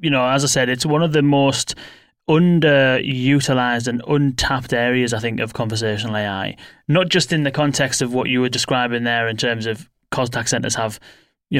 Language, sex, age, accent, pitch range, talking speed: English, male, 20-39, British, 120-140 Hz, 190 wpm